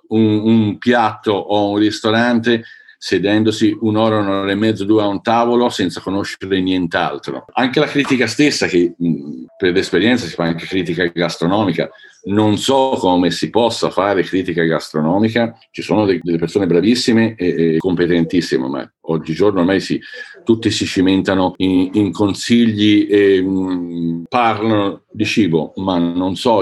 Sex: male